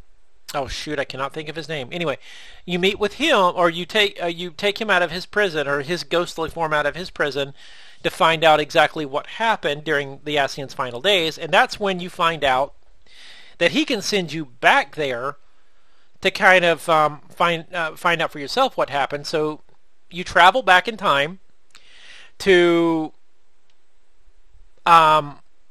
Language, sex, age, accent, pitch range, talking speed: English, male, 40-59, American, 155-200 Hz, 175 wpm